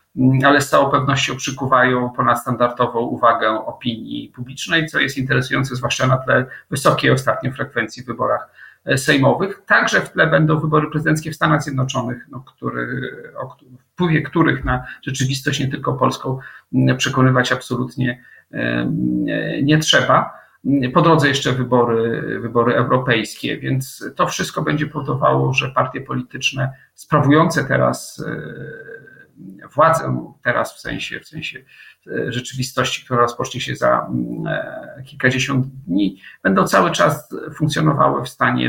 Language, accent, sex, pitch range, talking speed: Polish, native, male, 125-145 Hz, 125 wpm